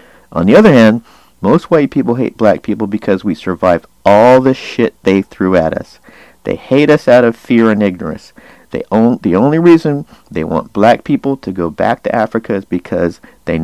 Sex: male